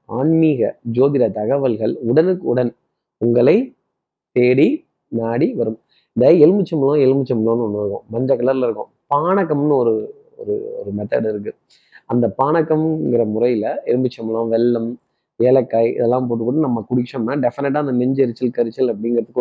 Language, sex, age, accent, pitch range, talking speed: Tamil, male, 30-49, native, 120-155 Hz, 110 wpm